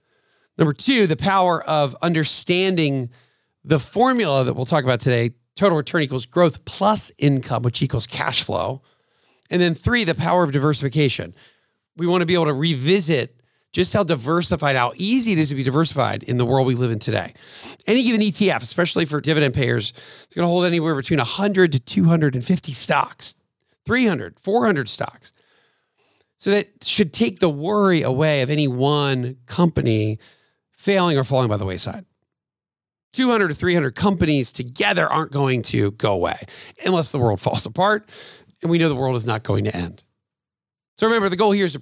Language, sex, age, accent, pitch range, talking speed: English, male, 40-59, American, 125-180 Hz, 175 wpm